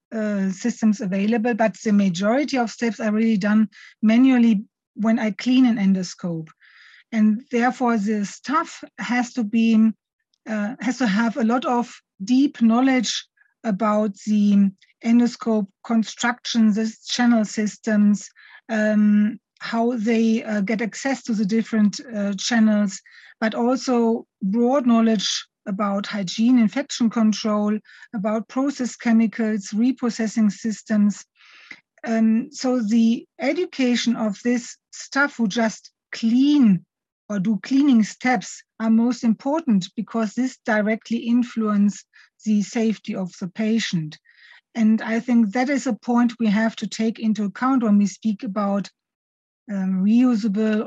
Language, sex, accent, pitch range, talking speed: English, female, German, 210-245 Hz, 130 wpm